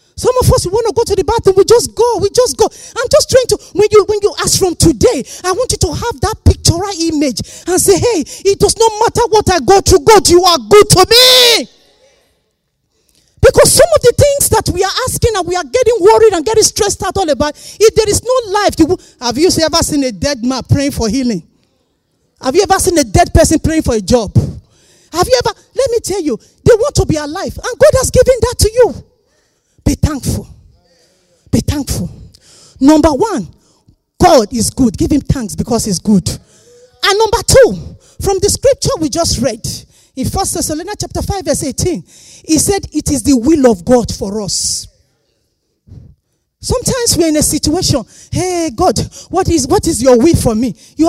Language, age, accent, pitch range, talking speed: English, 40-59, Nigerian, 290-445 Hz, 205 wpm